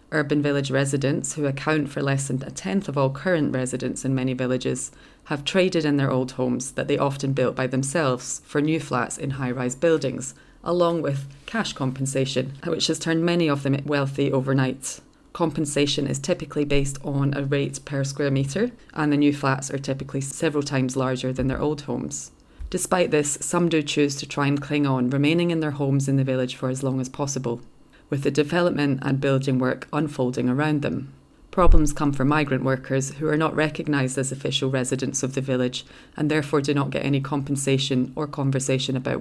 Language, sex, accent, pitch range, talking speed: English, female, British, 130-150 Hz, 195 wpm